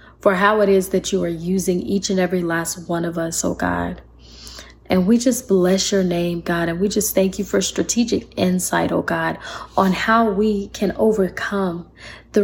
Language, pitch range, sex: English, 170-200 Hz, female